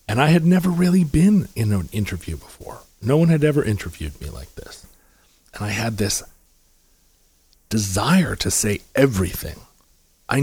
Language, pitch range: English, 95-140 Hz